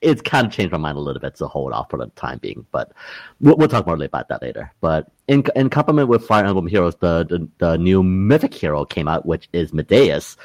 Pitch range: 75-105 Hz